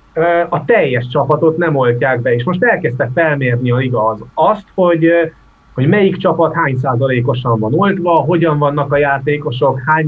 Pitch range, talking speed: 125-155 Hz, 160 wpm